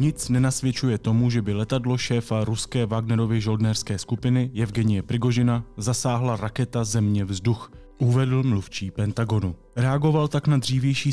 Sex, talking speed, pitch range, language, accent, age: male, 125 wpm, 110-135 Hz, Czech, native, 20-39